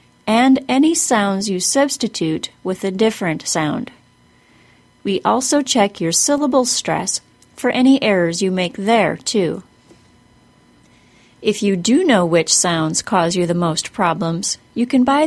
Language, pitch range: English, 180-235 Hz